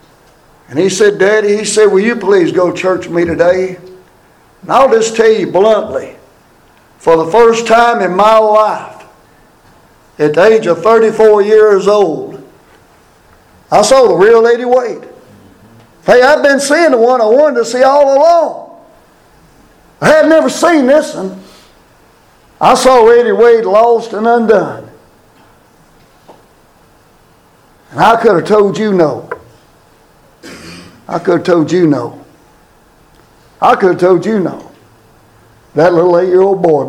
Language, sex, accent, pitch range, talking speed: English, male, American, 180-265 Hz, 145 wpm